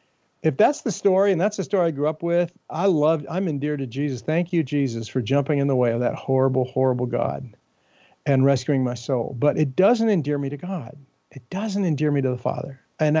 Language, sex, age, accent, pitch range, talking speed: English, male, 50-69, American, 140-180 Hz, 225 wpm